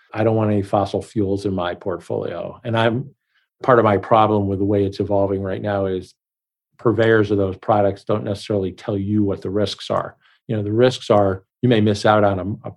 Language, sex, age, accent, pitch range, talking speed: English, male, 50-69, American, 95-115 Hz, 220 wpm